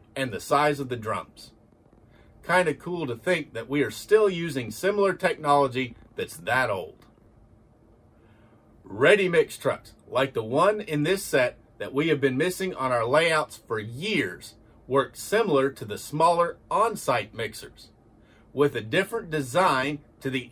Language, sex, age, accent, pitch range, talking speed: English, male, 40-59, American, 115-155 Hz, 150 wpm